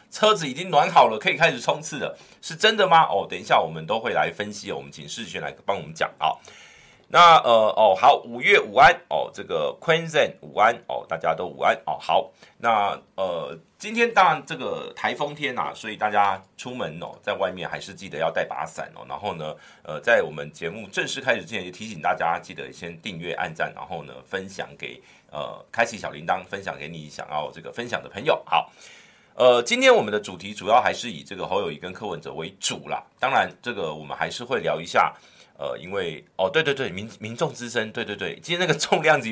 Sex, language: male, Chinese